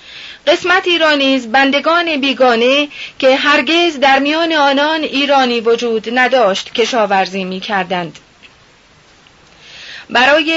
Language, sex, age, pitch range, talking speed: Persian, female, 30-49, 225-295 Hz, 90 wpm